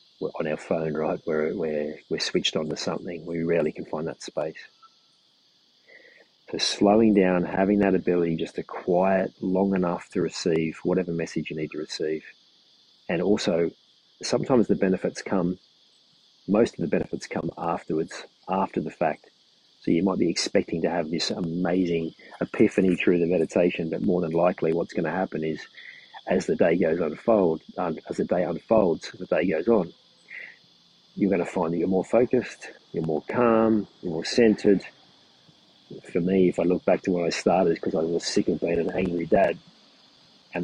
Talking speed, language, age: 175 wpm, English, 40-59